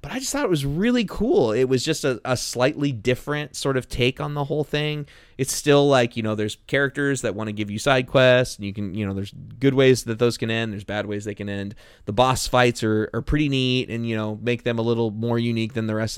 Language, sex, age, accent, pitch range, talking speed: English, male, 20-39, American, 110-130 Hz, 270 wpm